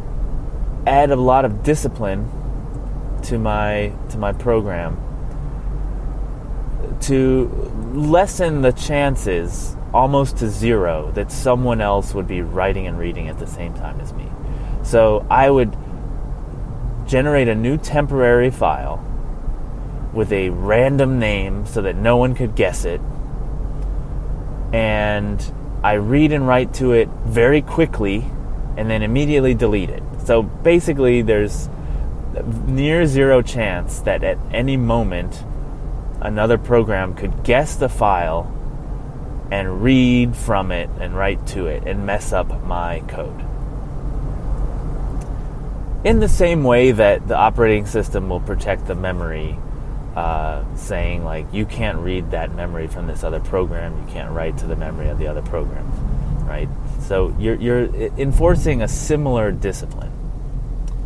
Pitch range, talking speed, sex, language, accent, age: 90-130 Hz, 135 wpm, male, English, American, 30-49